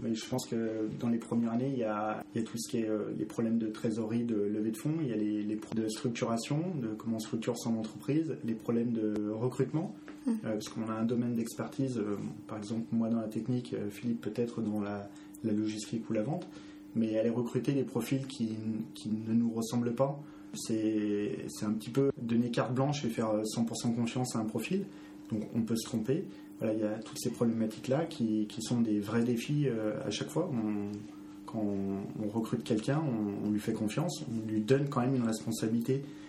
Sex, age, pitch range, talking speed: male, 20-39, 110-125 Hz, 220 wpm